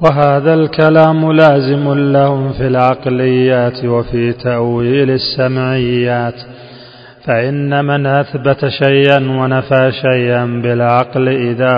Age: 30-49